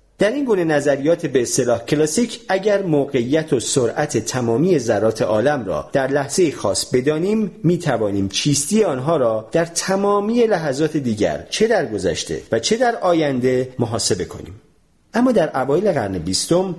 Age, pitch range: 40-59, 115-180 Hz